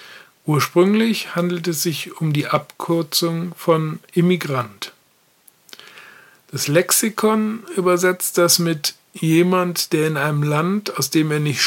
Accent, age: German, 50-69